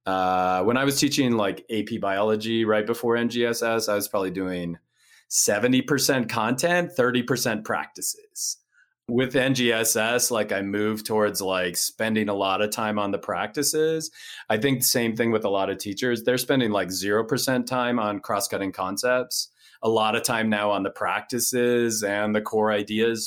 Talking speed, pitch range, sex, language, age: 165 wpm, 100-125 Hz, male, English, 30-49